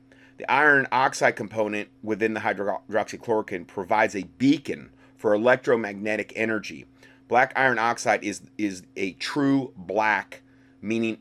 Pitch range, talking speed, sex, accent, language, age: 110-135 Hz, 120 wpm, male, American, English, 30-49